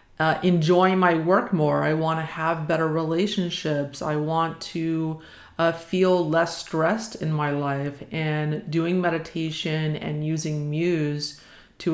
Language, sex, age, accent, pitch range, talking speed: English, female, 30-49, American, 150-165 Hz, 135 wpm